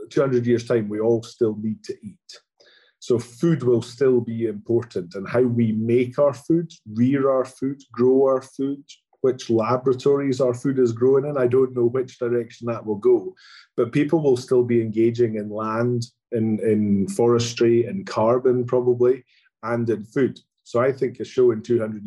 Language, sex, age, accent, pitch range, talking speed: English, male, 30-49, British, 115-135 Hz, 180 wpm